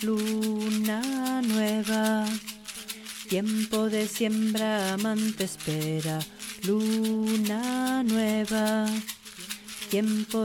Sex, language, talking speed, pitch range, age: female, Spanish, 55 wpm, 210-220 Hz, 30-49